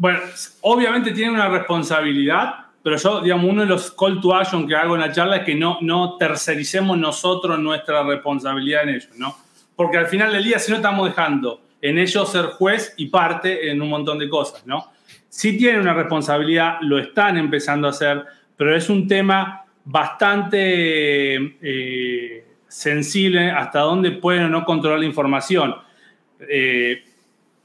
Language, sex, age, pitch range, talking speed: Spanish, male, 30-49, 145-185 Hz, 165 wpm